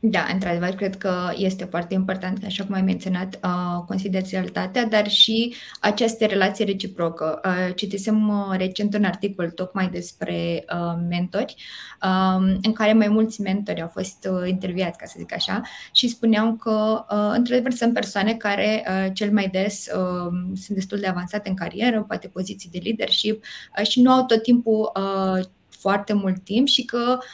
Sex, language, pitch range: female, Romanian, 185-215 Hz